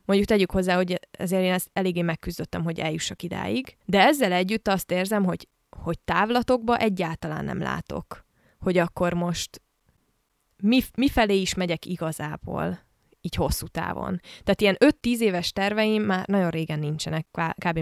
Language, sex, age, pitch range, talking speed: Hungarian, female, 20-39, 175-215 Hz, 150 wpm